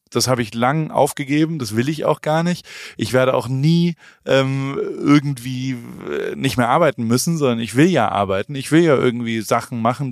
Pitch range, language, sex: 120-150 Hz, German, male